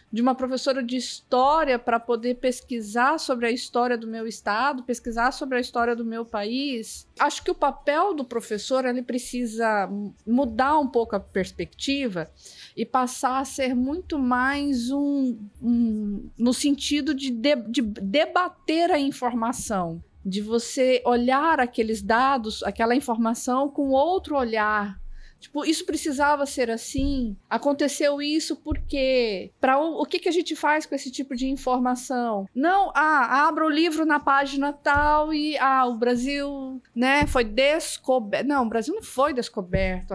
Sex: female